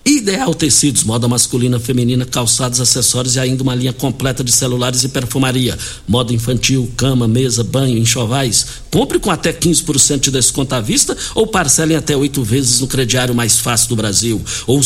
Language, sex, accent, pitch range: Portuguese, male, Brazilian, 120-150 Hz